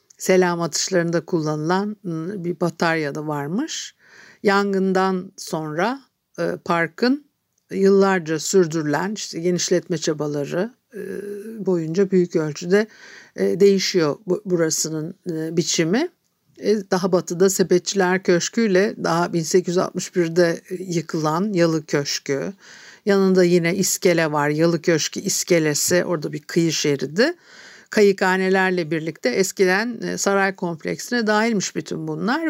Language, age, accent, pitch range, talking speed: Turkish, 60-79, native, 170-205 Hz, 90 wpm